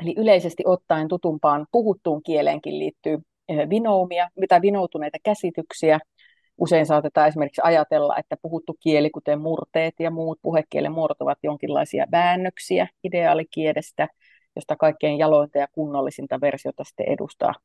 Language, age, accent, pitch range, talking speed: Finnish, 30-49, native, 150-180 Hz, 120 wpm